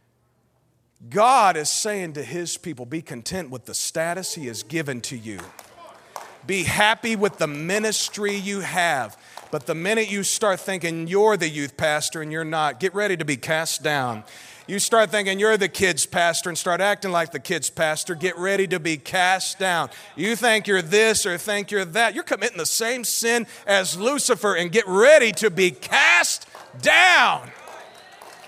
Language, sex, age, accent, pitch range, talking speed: English, male, 40-59, American, 175-245 Hz, 175 wpm